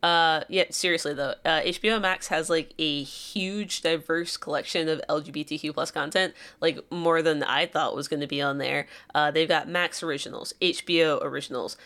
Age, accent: 20-39, American